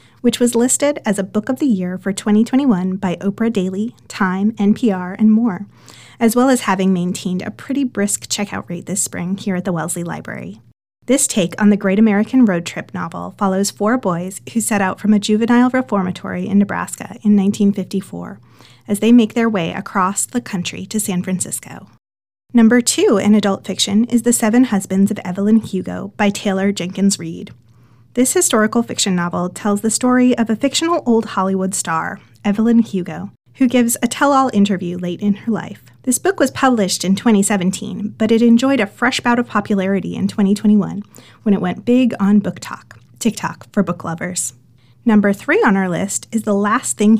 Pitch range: 185-230 Hz